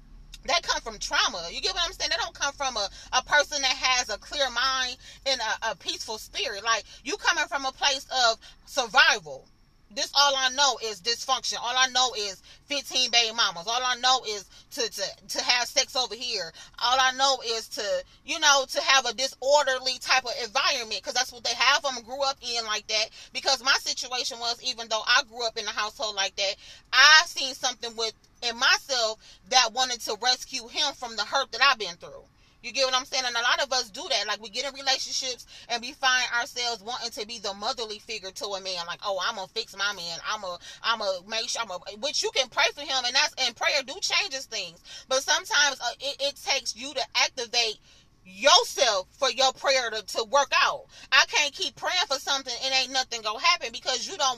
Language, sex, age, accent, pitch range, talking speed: English, female, 30-49, American, 230-275 Hz, 225 wpm